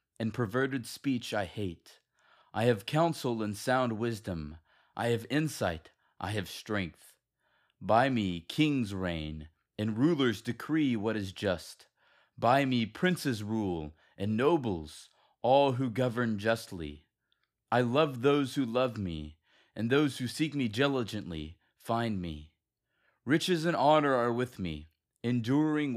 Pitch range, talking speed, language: 105-135 Hz, 135 wpm, English